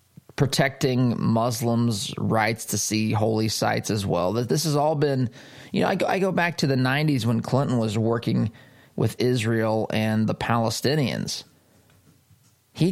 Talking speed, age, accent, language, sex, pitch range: 150 wpm, 20-39, American, English, male, 110-130 Hz